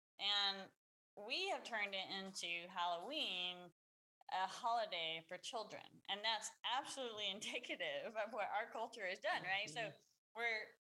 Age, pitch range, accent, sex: 20-39, 175-225 Hz, American, female